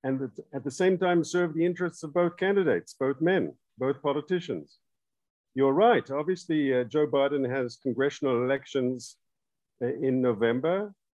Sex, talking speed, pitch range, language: male, 145 wpm, 135-170 Hz, English